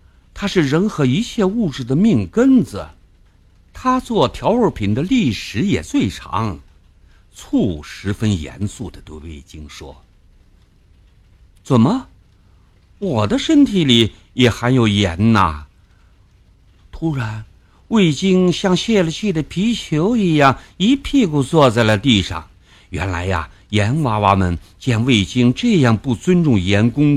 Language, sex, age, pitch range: Chinese, male, 60-79, 90-145 Hz